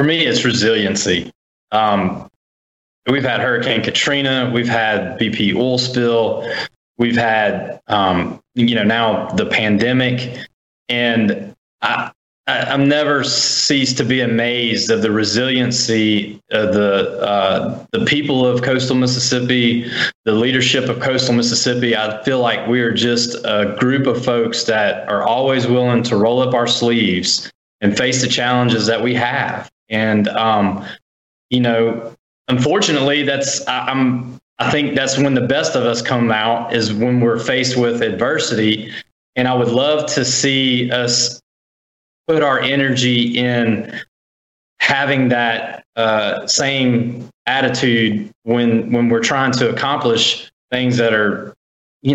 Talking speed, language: 140 wpm, English